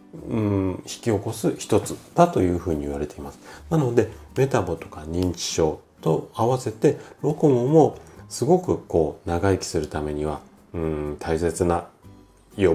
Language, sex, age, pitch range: Japanese, male, 40-59, 80-110 Hz